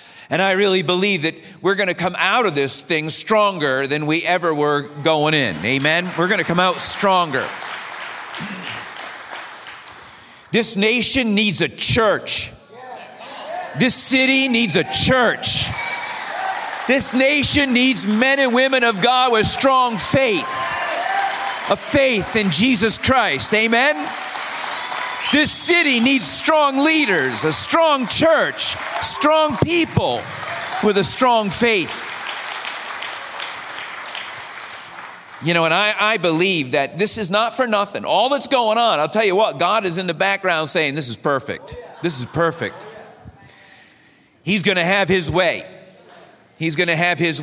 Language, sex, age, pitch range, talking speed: English, male, 50-69, 165-255 Hz, 140 wpm